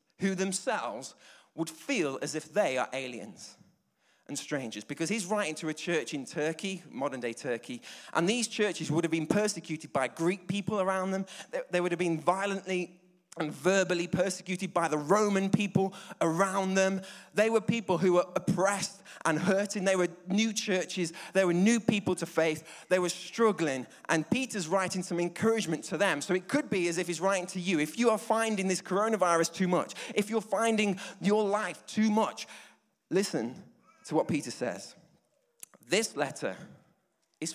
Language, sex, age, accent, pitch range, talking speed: English, male, 20-39, British, 160-200 Hz, 175 wpm